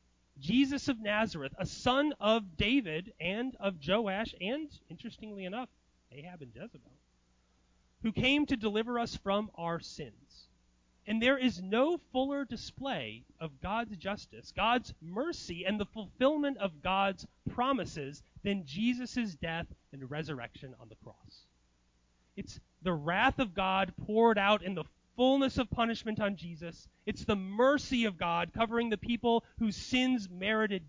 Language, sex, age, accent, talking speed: English, male, 30-49, American, 145 wpm